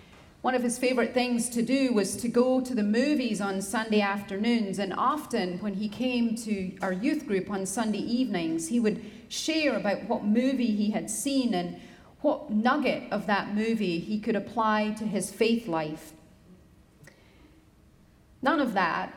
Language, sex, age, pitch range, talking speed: English, female, 40-59, 200-250 Hz, 165 wpm